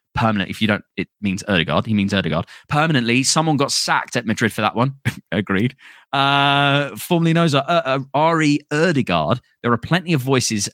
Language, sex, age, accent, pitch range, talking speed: English, male, 20-39, British, 110-145 Hz, 180 wpm